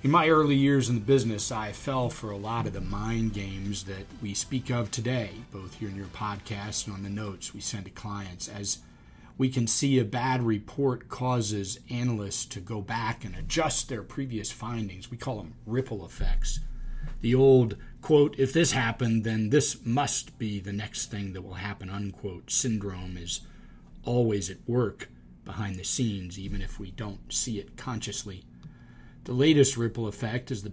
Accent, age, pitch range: American, 40-59, 100-130 Hz